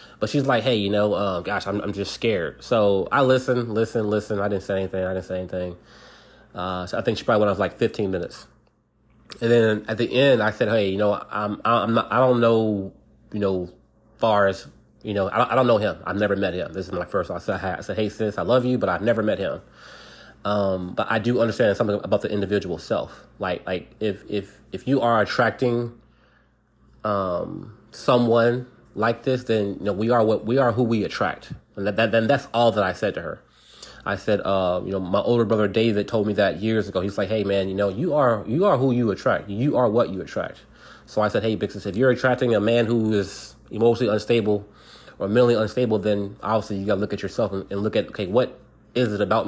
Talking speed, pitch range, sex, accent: 235 wpm, 100-120 Hz, male, American